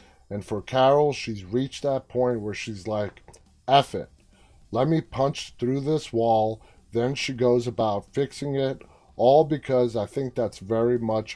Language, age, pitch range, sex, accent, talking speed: English, 30-49, 105-135 Hz, male, American, 165 wpm